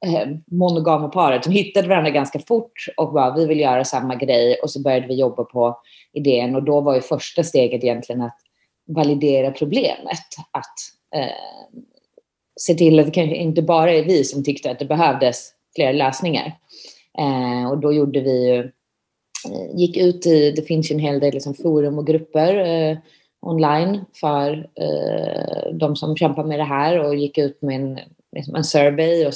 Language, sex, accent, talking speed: Swedish, female, native, 175 wpm